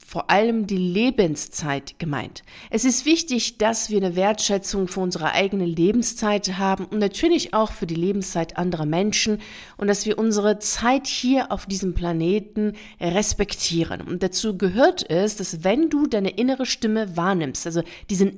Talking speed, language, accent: 155 wpm, German, German